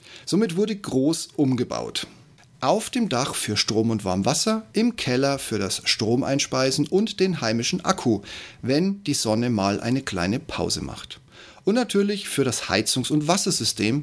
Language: German